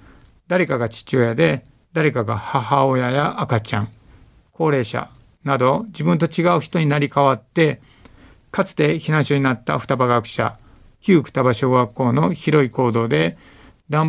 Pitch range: 115-155 Hz